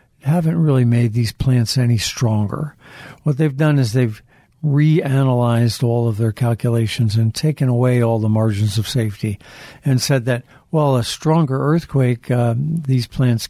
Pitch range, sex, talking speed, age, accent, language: 115-145 Hz, male, 155 wpm, 60-79, American, English